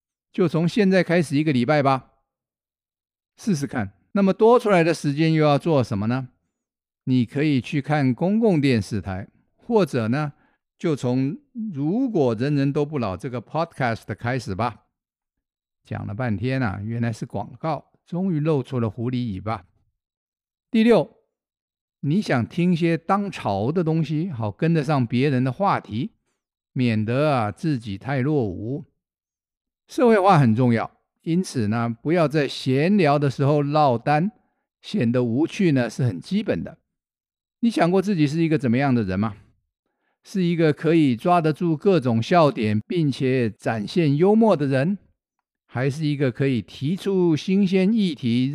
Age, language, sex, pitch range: 50-69, Chinese, male, 120-175 Hz